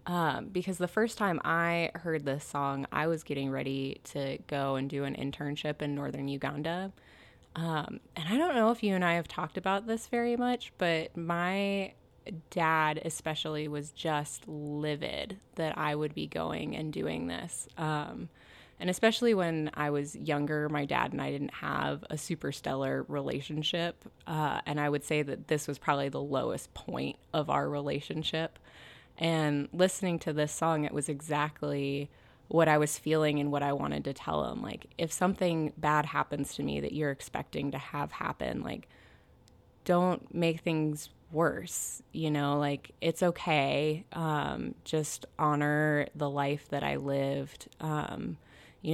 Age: 20-39